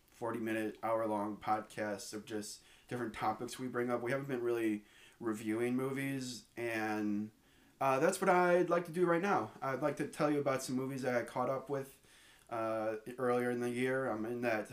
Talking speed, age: 190 wpm, 20-39